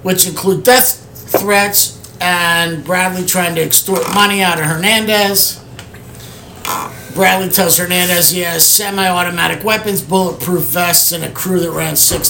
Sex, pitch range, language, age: male, 150-185 Hz, English, 50-69